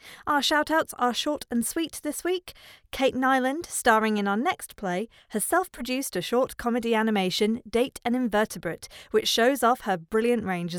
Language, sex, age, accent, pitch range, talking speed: English, female, 40-59, British, 195-260 Hz, 165 wpm